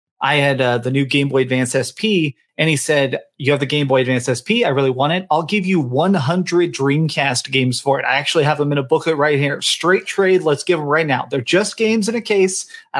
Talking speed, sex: 250 wpm, male